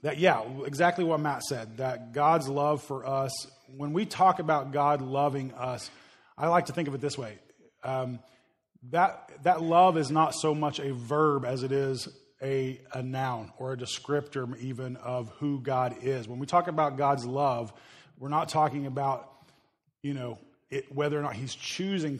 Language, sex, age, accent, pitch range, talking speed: English, male, 30-49, American, 135-155 Hz, 185 wpm